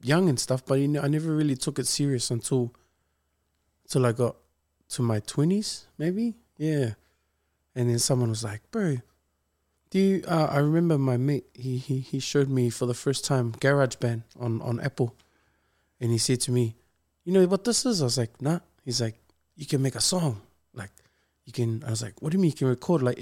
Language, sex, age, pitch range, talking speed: English, male, 20-39, 120-155 Hz, 210 wpm